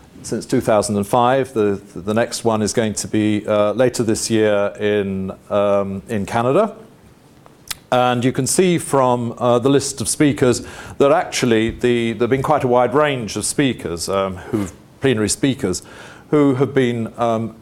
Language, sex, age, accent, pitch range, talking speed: English, male, 40-59, British, 100-130 Hz, 165 wpm